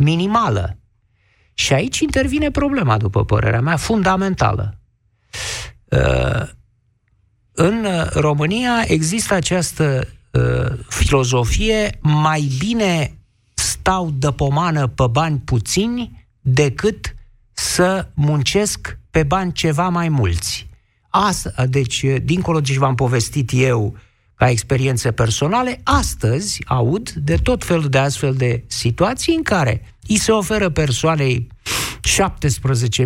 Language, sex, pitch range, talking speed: Romanian, male, 115-185 Hz, 105 wpm